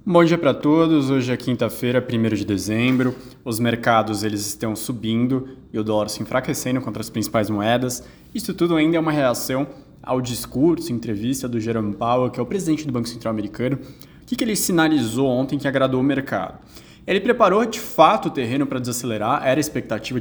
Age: 20-39